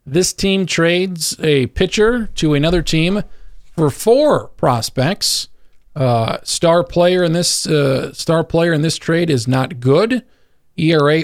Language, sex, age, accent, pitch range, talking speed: English, male, 40-59, American, 140-180 Hz, 140 wpm